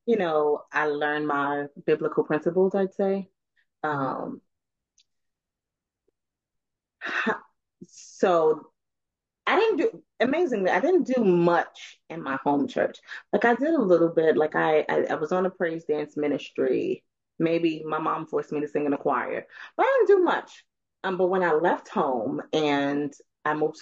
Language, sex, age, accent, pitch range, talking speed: English, female, 30-49, American, 155-200 Hz, 160 wpm